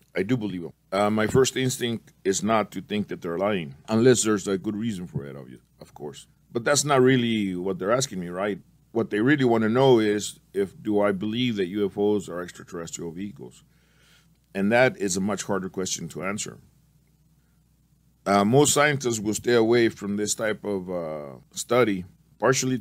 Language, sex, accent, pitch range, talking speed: English, male, American, 95-120 Hz, 185 wpm